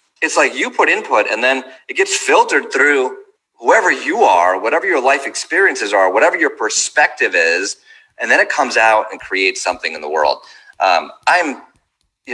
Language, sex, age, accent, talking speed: English, male, 30-49, American, 180 wpm